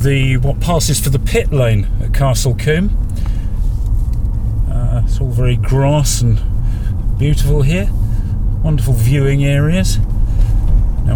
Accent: British